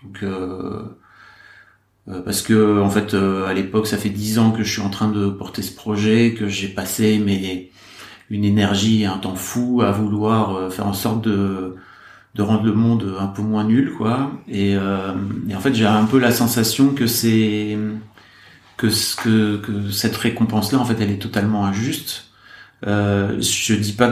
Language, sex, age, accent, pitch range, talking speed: French, male, 40-59, French, 100-115 Hz, 190 wpm